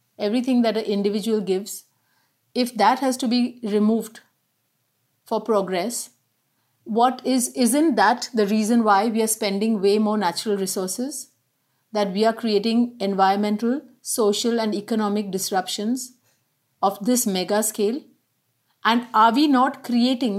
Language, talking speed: English, 130 wpm